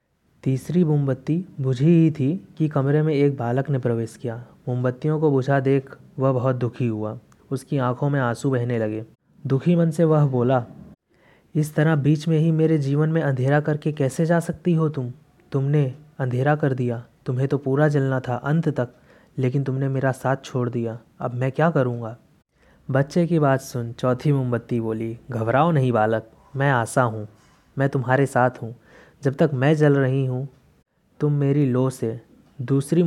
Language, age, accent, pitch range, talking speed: Hindi, 20-39, native, 120-140 Hz, 175 wpm